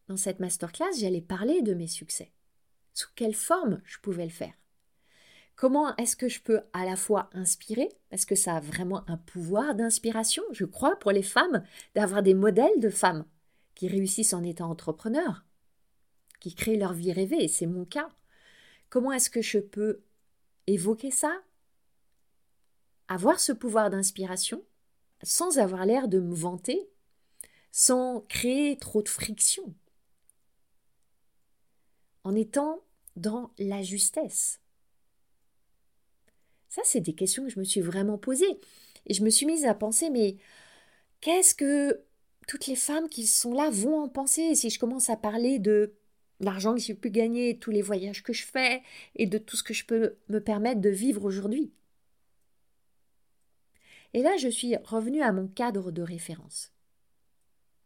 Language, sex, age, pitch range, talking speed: French, female, 40-59, 190-255 Hz, 160 wpm